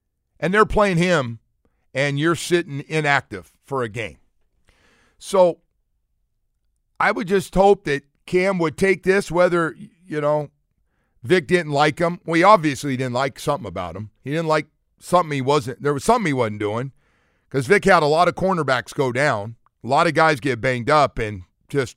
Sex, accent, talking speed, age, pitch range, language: male, American, 180 wpm, 50-69, 115-160 Hz, English